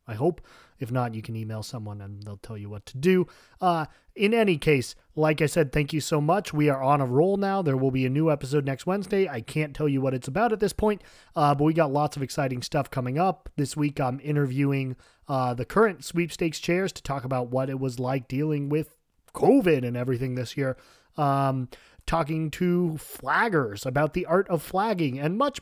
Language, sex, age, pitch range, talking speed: English, male, 30-49, 135-175 Hz, 220 wpm